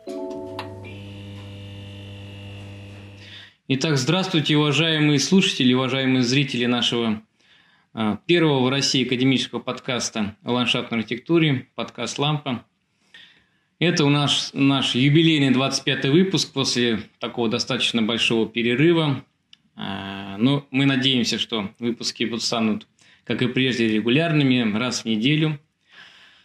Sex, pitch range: male, 115-145 Hz